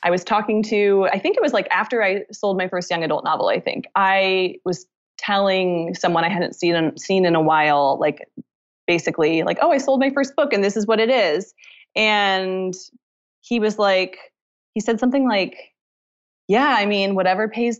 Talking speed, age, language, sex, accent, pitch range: 195 wpm, 20-39, English, female, American, 175-225 Hz